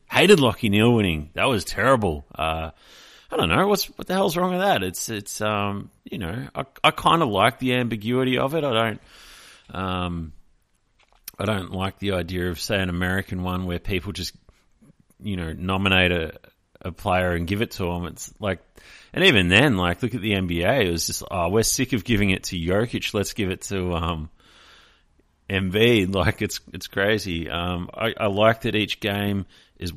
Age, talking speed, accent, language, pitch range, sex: 30-49, 195 wpm, Australian, English, 85-110 Hz, male